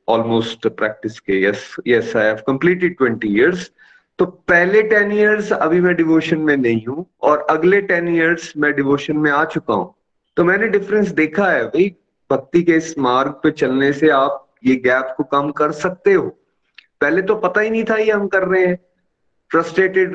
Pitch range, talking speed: 140-180 Hz, 175 wpm